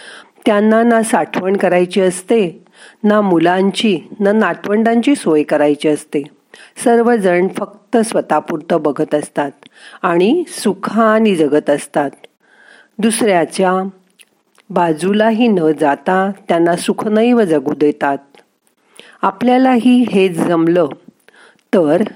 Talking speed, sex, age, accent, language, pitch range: 90 wpm, female, 40-59, native, Marathi, 165-225 Hz